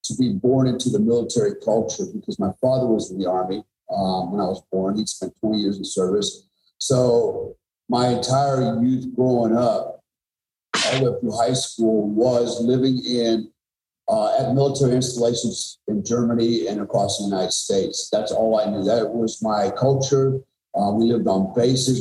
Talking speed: 175 wpm